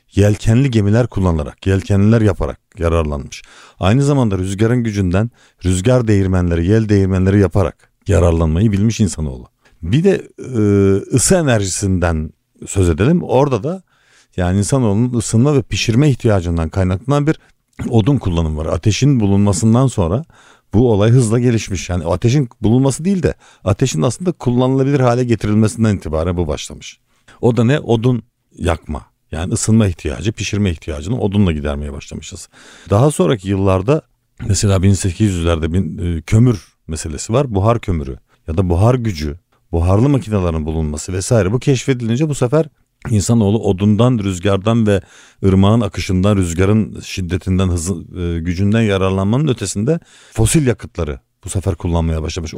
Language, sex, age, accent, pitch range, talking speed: Turkish, male, 50-69, native, 90-120 Hz, 130 wpm